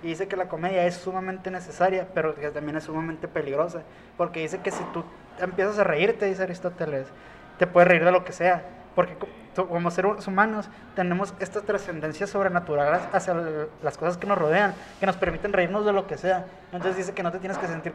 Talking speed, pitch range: 205 wpm, 165-195 Hz